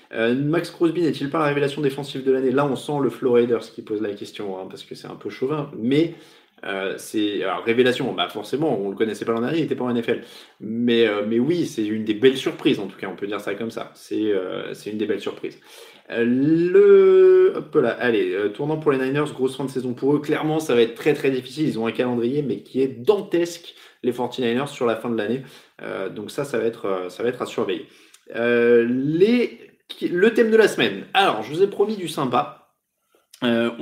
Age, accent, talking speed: 20-39, French, 240 wpm